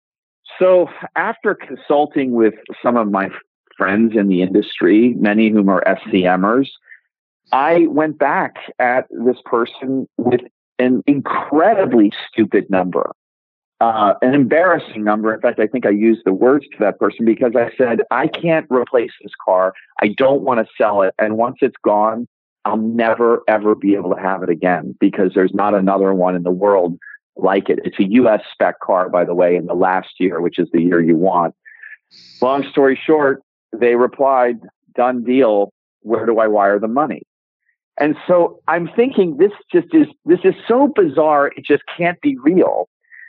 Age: 40-59